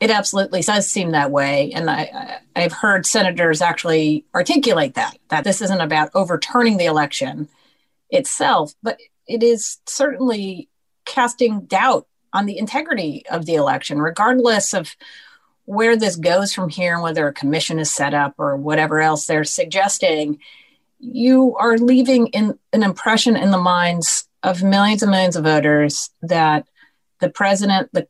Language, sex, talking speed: English, female, 145 wpm